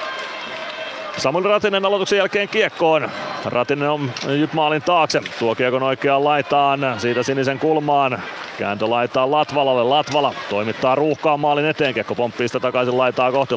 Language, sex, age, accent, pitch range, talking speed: Finnish, male, 30-49, native, 120-140 Hz, 125 wpm